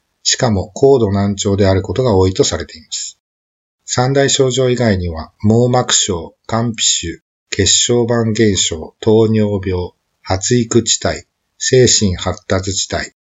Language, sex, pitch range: Japanese, male, 95-115 Hz